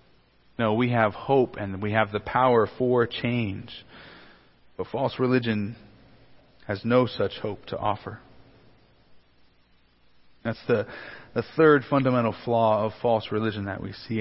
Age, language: 40-59, English